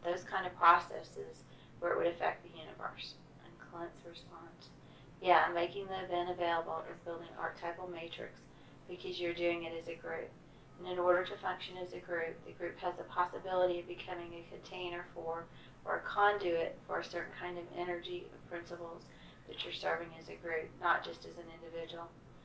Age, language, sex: 40-59, English, female